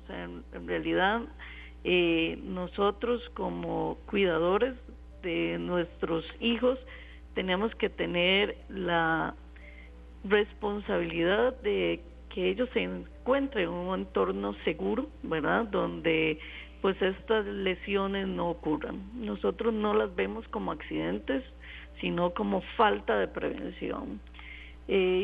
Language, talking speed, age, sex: Spanish, 100 wpm, 40-59, female